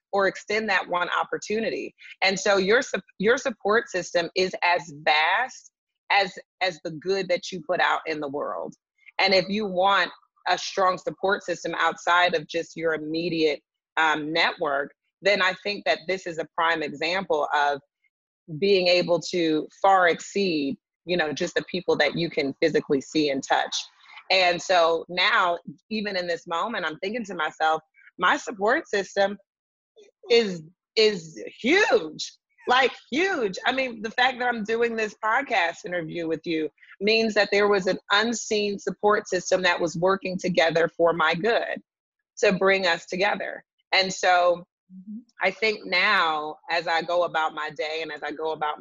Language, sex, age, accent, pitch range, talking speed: English, female, 30-49, American, 165-205 Hz, 165 wpm